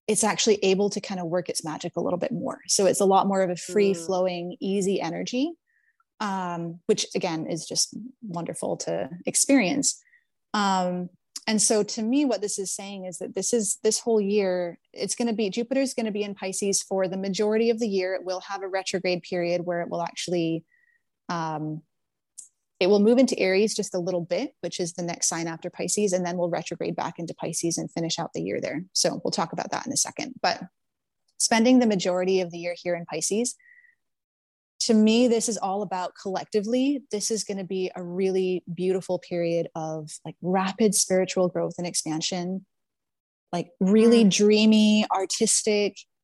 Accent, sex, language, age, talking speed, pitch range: American, female, English, 30-49, 195 wpm, 180-220 Hz